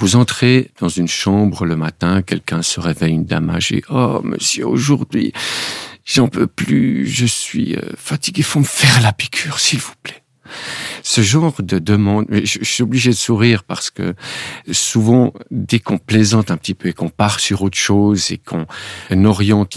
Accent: French